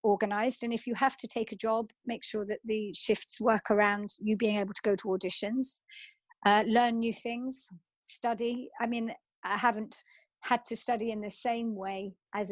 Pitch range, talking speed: 195-235 Hz, 190 wpm